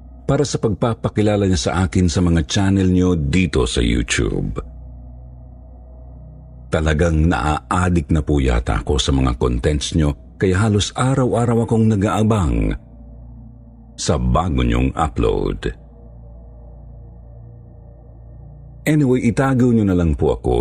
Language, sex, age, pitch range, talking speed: Filipino, male, 50-69, 65-100 Hz, 115 wpm